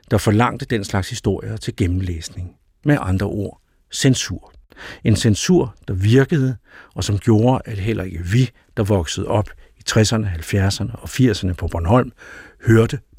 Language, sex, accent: Danish, male, native